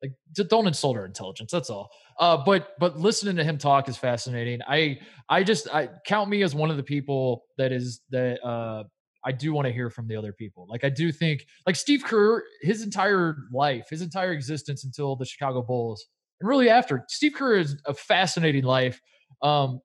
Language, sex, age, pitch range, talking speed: English, male, 20-39, 115-160 Hz, 205 wpm